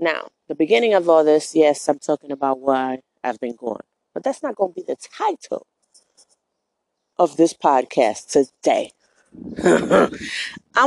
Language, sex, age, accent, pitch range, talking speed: English, female, 20-39, American, 140-210 Hz, 150 wpm